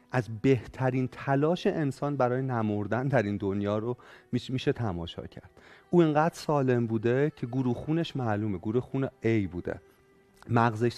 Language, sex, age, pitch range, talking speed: Persian, male, 40-59, 115-155 Hz, 135 wpm